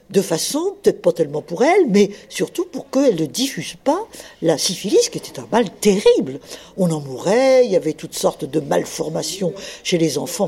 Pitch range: 165-250 Hz